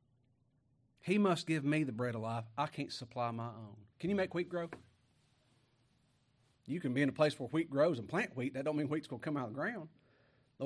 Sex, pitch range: male, 120-150 Hz